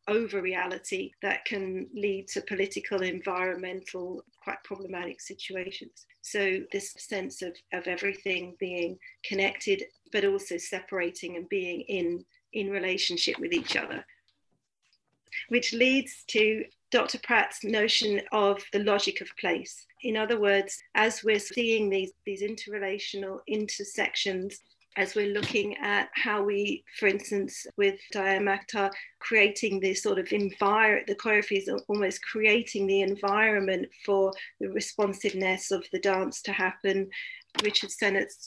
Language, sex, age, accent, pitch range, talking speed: English, female, 40-59, British, 190-220 Hz, 130 wpm